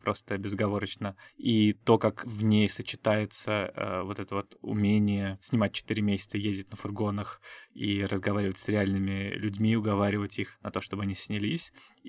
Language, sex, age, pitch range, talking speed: Russian, male, 20-39, 100-115 Hz, 155 wpm